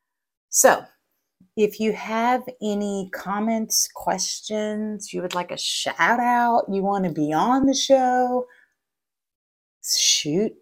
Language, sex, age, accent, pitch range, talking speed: English, female, 30-49, American, 180-255 Hz, 120 wpm